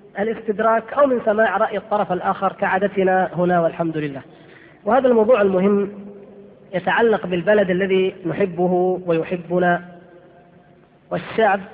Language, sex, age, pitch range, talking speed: Arabic, female, 20-39, 175-195 Hz, 100 wpm